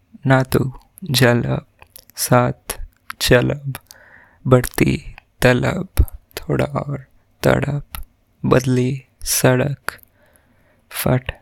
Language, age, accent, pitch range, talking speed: Hindi, 20-39, native, 110-130 Hz, 65 wpm